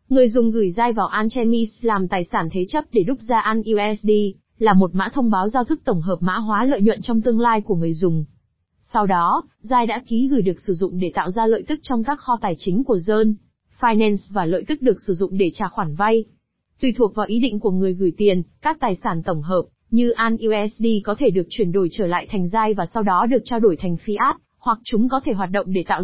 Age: 20-39